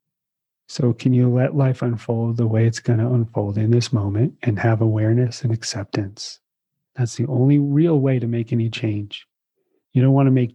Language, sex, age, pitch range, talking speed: English, male, 30-49, 115-135 Hz, 180 wpm